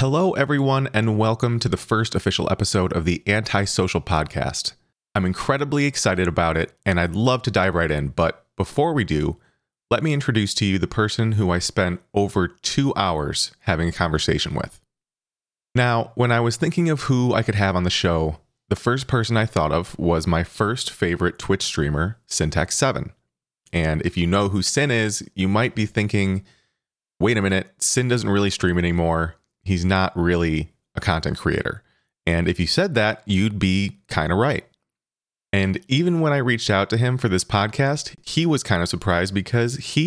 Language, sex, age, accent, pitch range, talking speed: English, male, 30-49, American, 85-115 Hz, 190 wpm